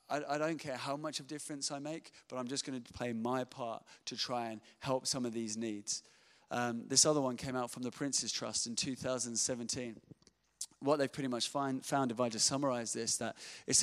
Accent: British